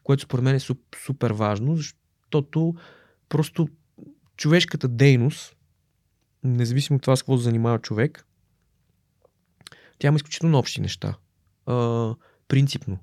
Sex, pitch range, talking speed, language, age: male, 110-150 Hz, 120 wpm, Bulgarian, 20-39